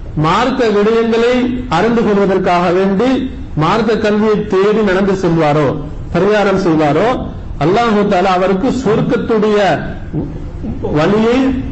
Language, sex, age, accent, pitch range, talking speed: English, male, 50-69, Indian, 170-220 Hz, 115 wpm